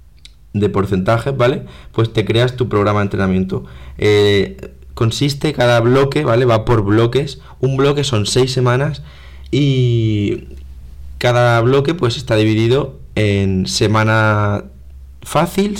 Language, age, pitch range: Spanish, 20-39, 100-120 Hz